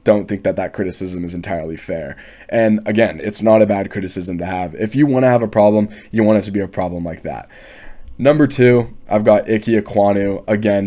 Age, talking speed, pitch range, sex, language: 20-39, 220 wpm, 95-105 Hz, male, English